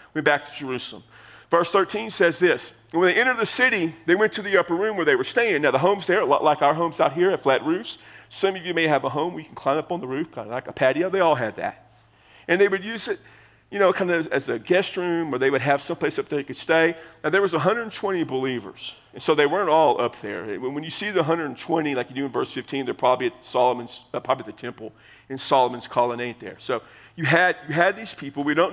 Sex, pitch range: male, 135-180 Hz